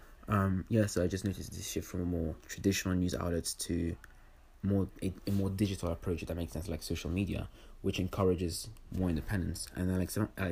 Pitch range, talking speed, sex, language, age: 85-95 Hz, 205 wpm, male, English, 20-39